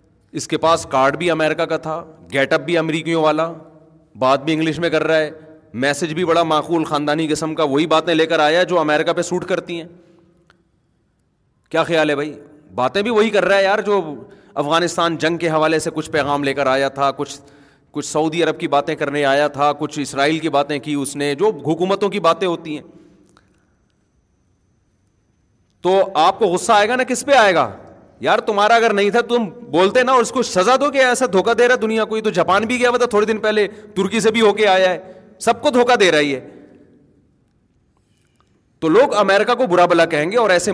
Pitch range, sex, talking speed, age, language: 155-195 Hz, male, 210 wpm, 30-49, Urdu